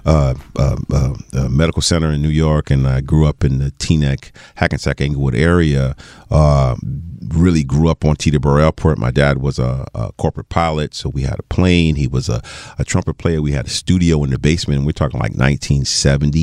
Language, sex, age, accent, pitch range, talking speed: English, male, 40-59, American, 70-85 Hz, 200 wpm